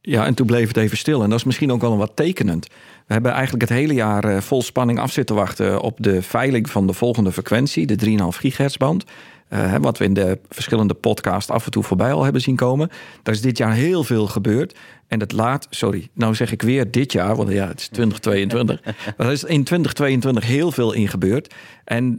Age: 40-59